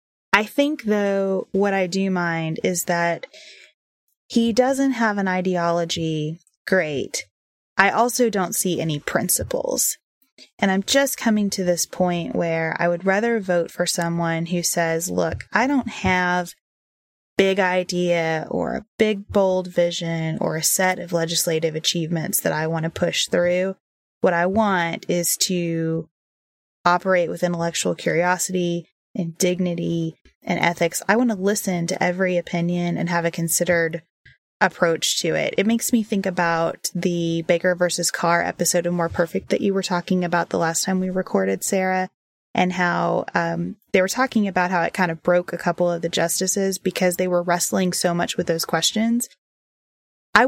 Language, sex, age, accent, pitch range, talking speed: English, female, 20-39, American, 170-195 Hz, 165 wpm